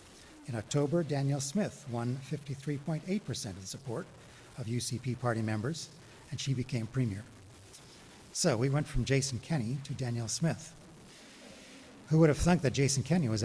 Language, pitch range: English, 115-145 Hz